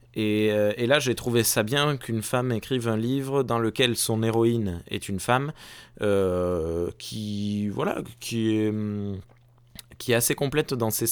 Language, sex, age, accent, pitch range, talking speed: French, male, 20-39, French, 105-140 Hz, 160 wpm